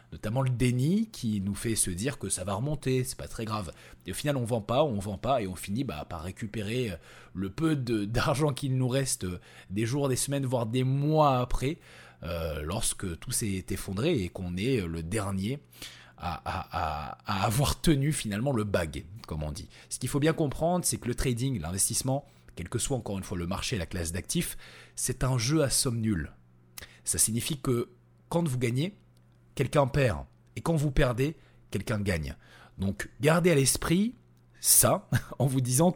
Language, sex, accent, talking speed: French, male, French, 195 wpm